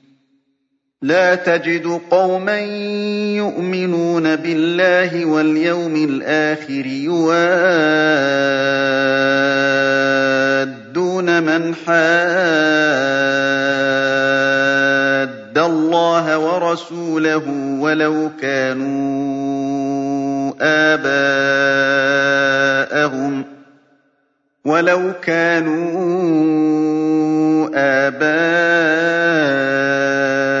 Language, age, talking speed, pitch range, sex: Arabic, 40-59, 35 wpm, 135-170 Hz, male